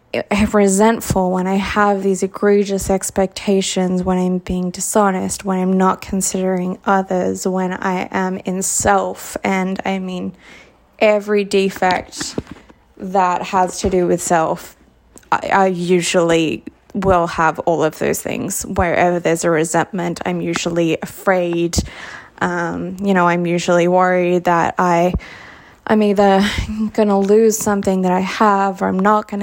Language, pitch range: English, 180-205 Hz